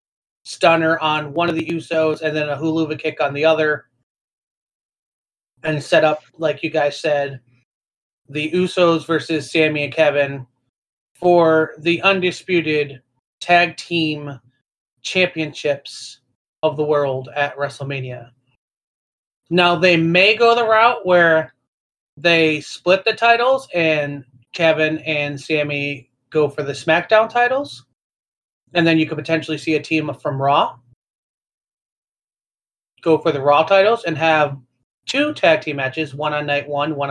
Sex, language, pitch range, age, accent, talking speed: male, English, 140-170 Hz, 30-49, American, 135 wpm